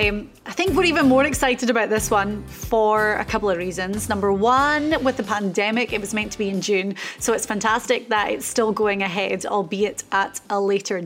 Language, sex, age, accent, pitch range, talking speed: English, female, 30-49, British, 210-255 Hz, 210 wpm